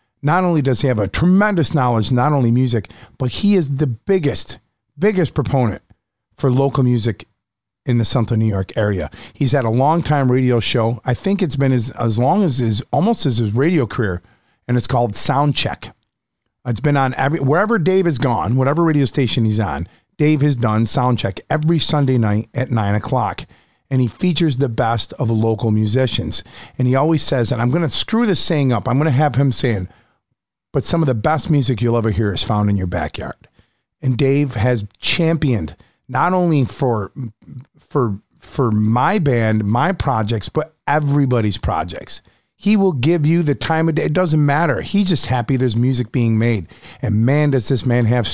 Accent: American